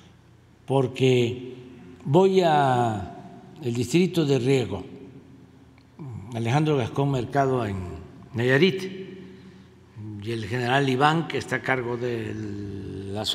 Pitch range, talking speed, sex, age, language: 115-150 Hz, 95 wpm, male, 60-79, Spanish